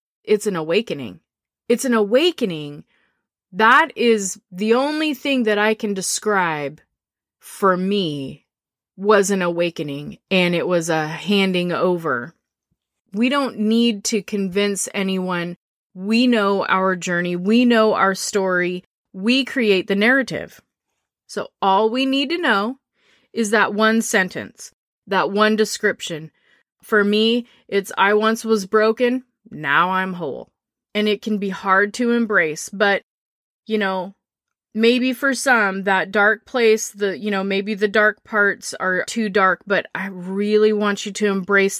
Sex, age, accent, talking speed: female, 20-39, American, 145 wpm